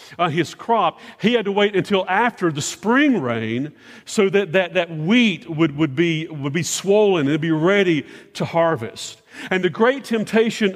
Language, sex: English, male